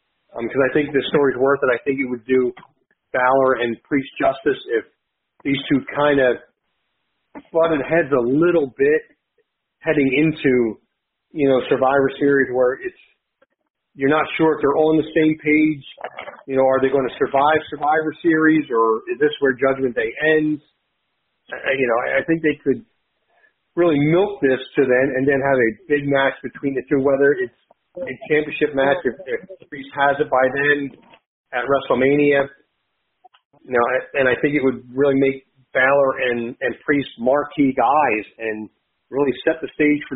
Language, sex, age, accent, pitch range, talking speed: English, male, 40-59, American, 130-155 Hz, 175 wpm